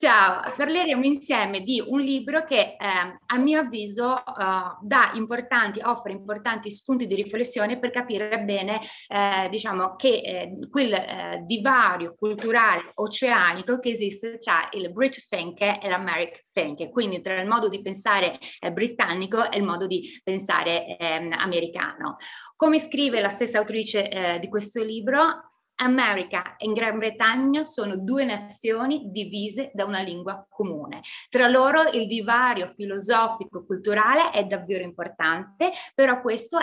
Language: Italian